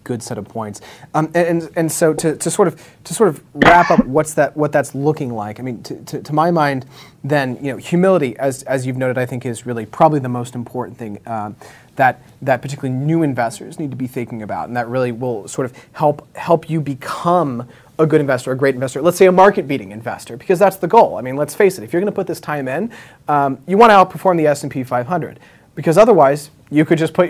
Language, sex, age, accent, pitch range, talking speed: English, male, 30-49, American, 125-160 Hz, 250 wpm